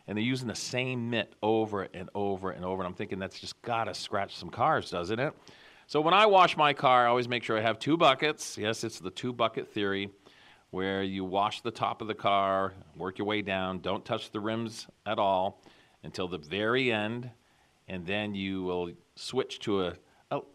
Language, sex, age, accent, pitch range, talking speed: English, male, 40-59, American, 95-130 Hz, 215 wpm